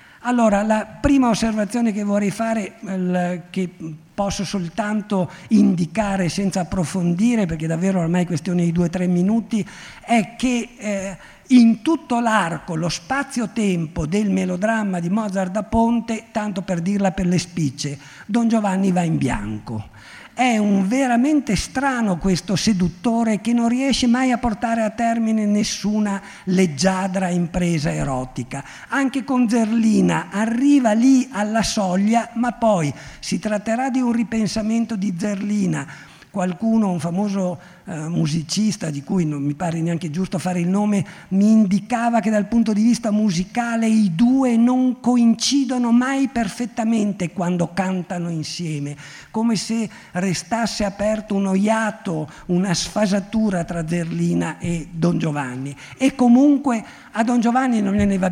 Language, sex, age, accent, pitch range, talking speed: Italian, male, 50-69, native, 180-225 Hz, 140 wpm